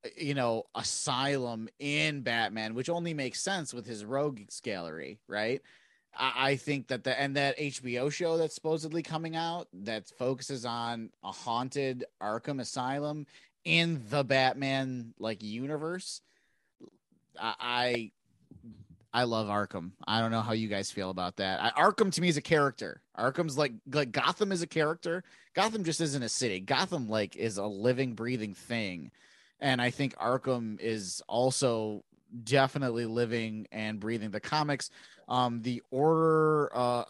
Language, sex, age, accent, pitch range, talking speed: English, male, 30-49, American, 110-145 Hz, 155 wpm